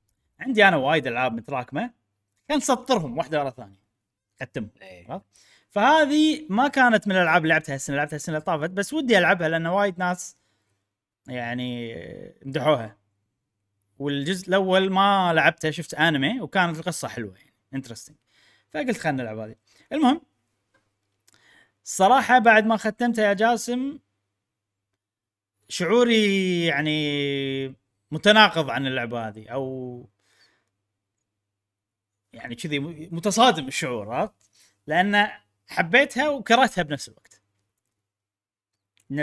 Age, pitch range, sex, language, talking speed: 30-49, 110-180 Hz, male, Arabic, 105 wpm